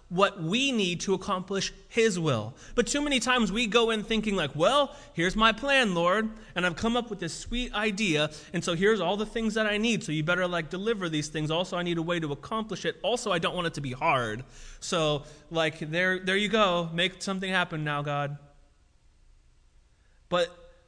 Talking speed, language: 210 wpm, English